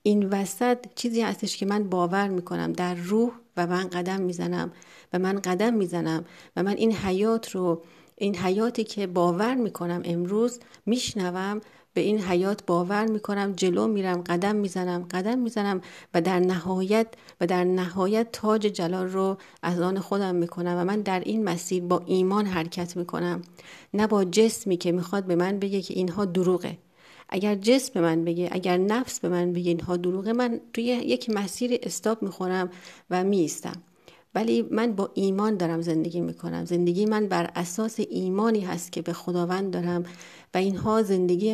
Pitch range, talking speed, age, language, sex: 175-210 Hz, 165 wpm, 40-59, Persian, female